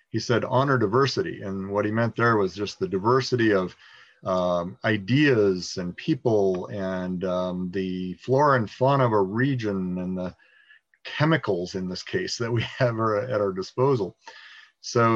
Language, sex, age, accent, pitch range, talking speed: English, male, 40-59, American, 100-125 Hz, 160 wpm